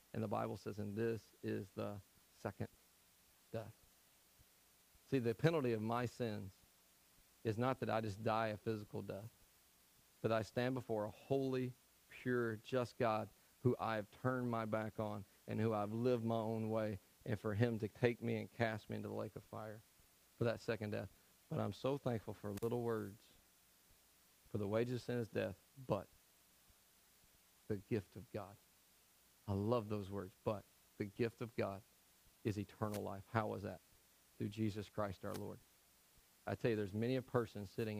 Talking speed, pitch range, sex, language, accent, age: 175 wpm, 100-115 Hz, male, English, American, 40-59